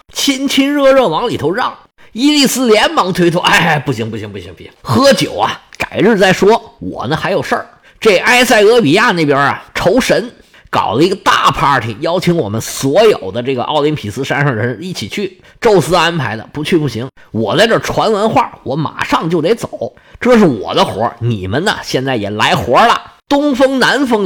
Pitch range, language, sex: 155-250 Hz, Chinese, male